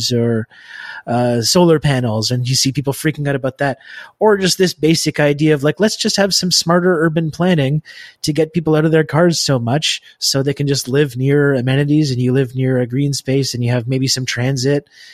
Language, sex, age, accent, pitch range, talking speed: English, male, 30-49, American, 130-160 Hz, 220 wpm